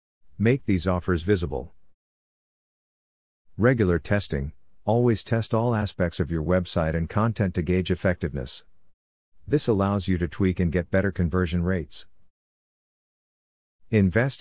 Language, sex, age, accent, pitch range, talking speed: English, male, 50-69, American, 85-105 Hz, 120 wpm